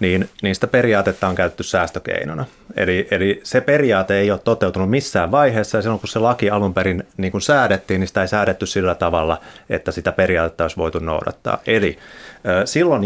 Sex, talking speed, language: male, 180 wpm, Finnish